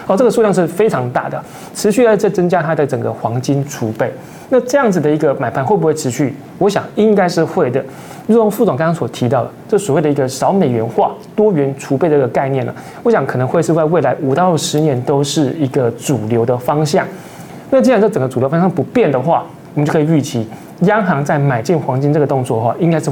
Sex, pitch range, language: male, 135-180 Hz, Chinese